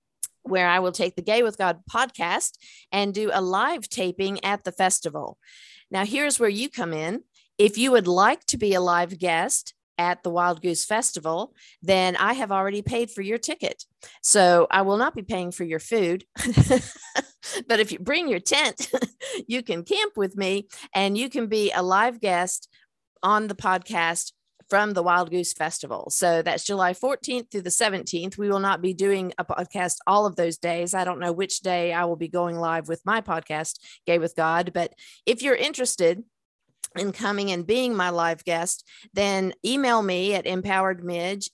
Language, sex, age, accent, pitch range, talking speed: English, female, 50-69, American, 175-220 Hz, 190 wpm